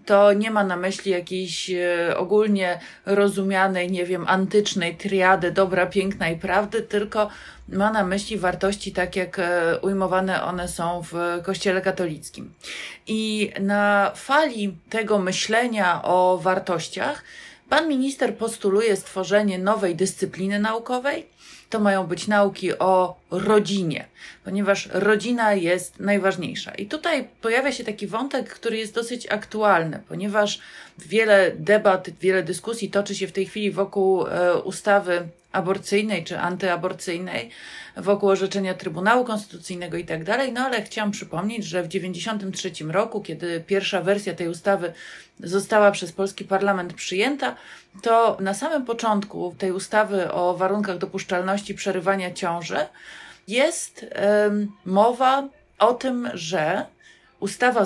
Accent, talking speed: native, 125 wpm